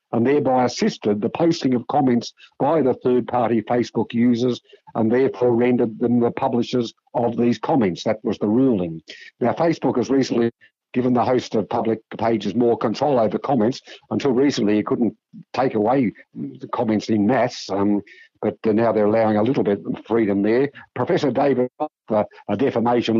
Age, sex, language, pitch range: 60-79, male, English, 110-125 Hz